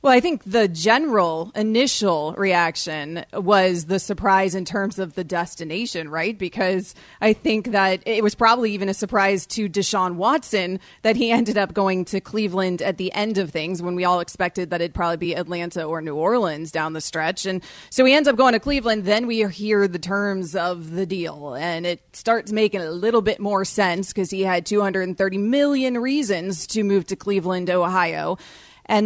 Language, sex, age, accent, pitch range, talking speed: English, female, 30-49, American, 185-230 Hz, 190 wpm